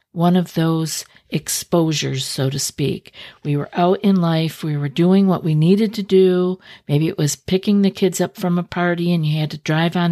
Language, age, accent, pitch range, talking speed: English, 50-69, American, 165-210 Hz, 215 wpm